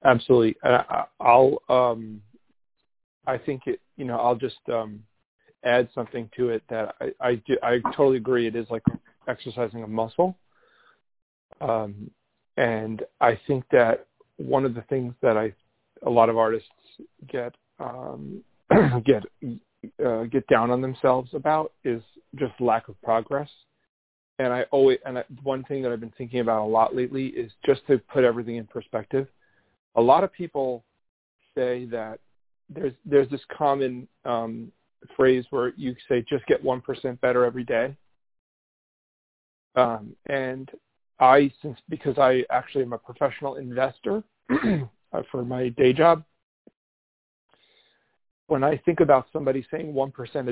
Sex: male